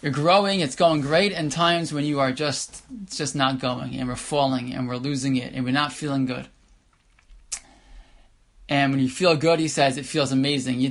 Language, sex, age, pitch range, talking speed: English, male, 20-39, 130-155 Hz, 210 wpm